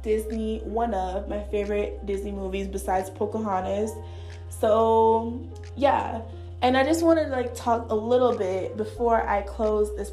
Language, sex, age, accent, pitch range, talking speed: English, female, 20-39, American, 185-230 Hz, 150 wpm